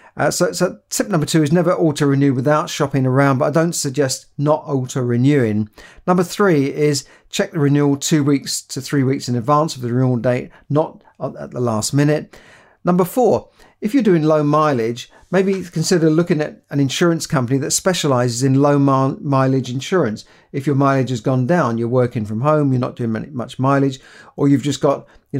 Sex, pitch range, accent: male, 130-155 Hz, British